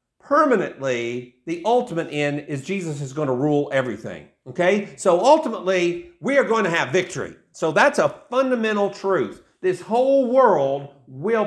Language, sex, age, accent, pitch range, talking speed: English, male, 50-69, American, 165-250 Hz, 150 wpm